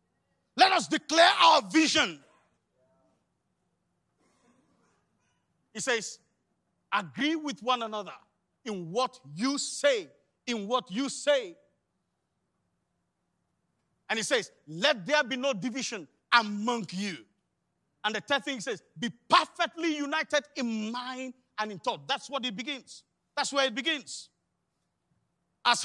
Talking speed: 120 wpm